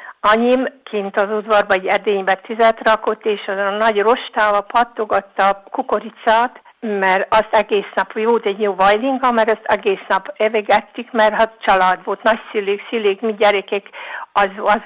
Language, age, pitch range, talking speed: Hungarian, 60-79, 200-225 Hz, 165 wpm